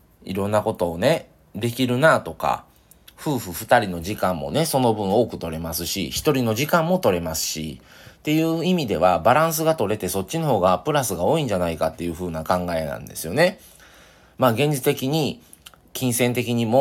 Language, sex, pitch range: Japanese, male, 90-130 Hz